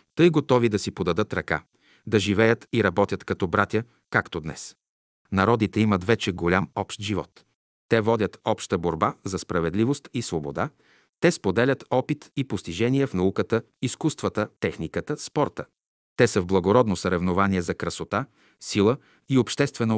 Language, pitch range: Bulgarian, 95-125 Hz